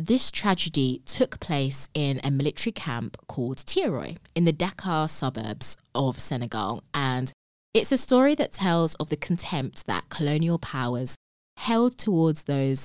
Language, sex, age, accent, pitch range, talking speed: English, female, 20-39, British, 135-200 Hz, 145 wpm